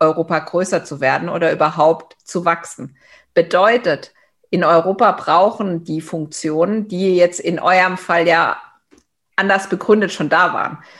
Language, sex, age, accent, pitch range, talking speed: German, female, 50-69, German, 170-205 Hz, 135 wpm